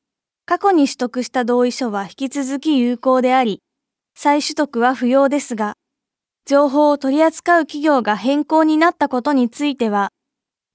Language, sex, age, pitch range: Japanese, female, 20-39, 230-300 Hz